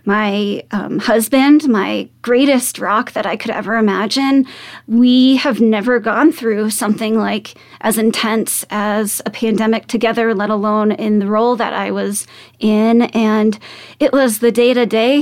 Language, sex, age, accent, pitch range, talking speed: English, female, 20-39, American, 215-250 Hz, 150 wpm